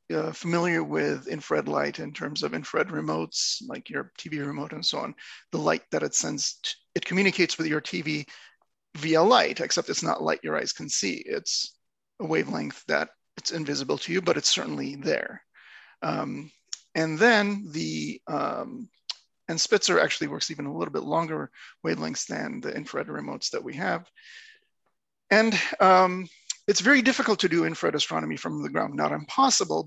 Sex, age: male, 30-49